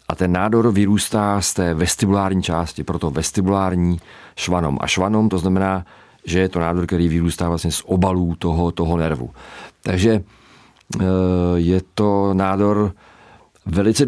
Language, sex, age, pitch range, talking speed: Czech, male, 40-59, 85-95 Hz, 135 wpm